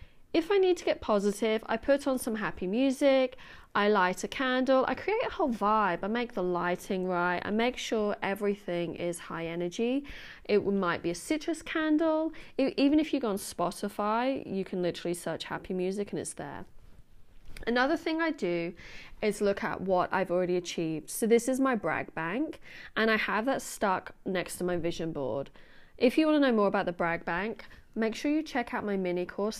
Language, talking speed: English, 200 wpm